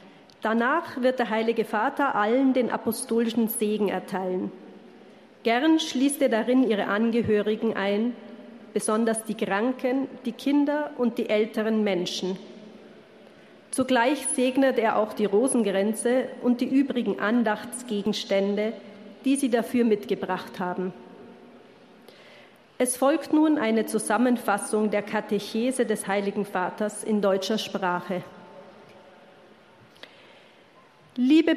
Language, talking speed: German, 105 wpm